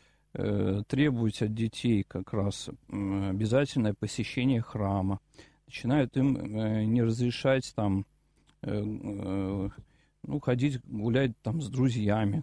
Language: Russian